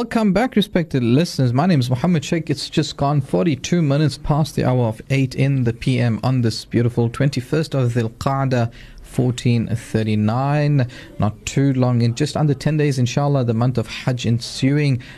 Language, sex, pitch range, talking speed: English, male, 115-145 Hz, 175 wpm